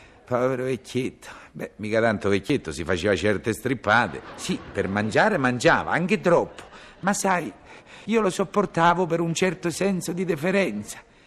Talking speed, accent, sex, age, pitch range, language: 145 wpm, native, male, 60-79, 125-190 Hz, Italian